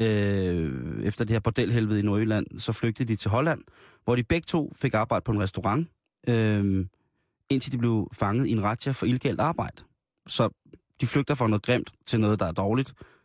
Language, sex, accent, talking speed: Danish, male, native, 195 wpm